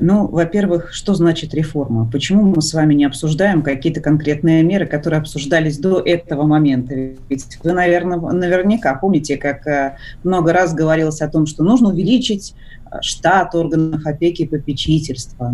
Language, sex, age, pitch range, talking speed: Russian, female, 30-49, 145-175 Hz, 145 wpm